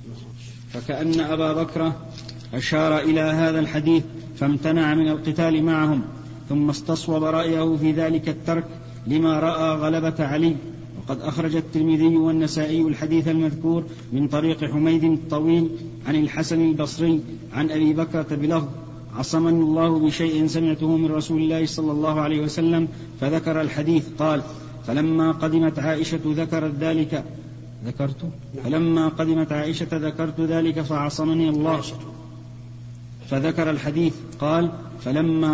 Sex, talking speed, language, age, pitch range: male, 115 wpm, Arabic, 50-69, 145-160 Hz